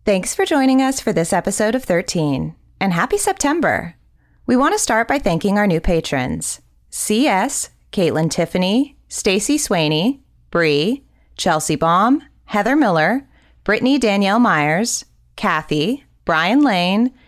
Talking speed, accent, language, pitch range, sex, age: 130 wpm, American, English, 165-250 Hz, female, 30-49